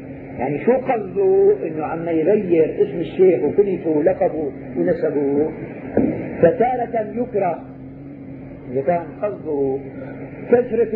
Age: 50-69